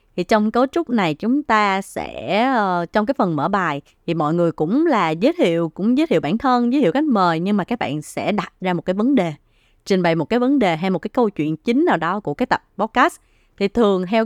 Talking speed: 255 wpm